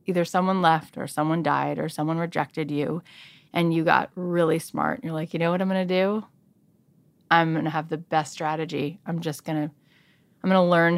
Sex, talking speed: female, 190 wpm